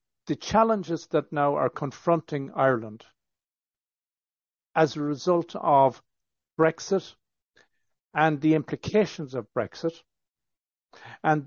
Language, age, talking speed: English, 60-79, 95 wpm